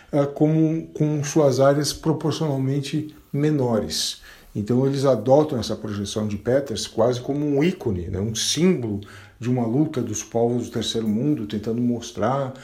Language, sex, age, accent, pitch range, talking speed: Portuguese, male, 50-69, Brazilian, 110-140 Hz, 140 wpm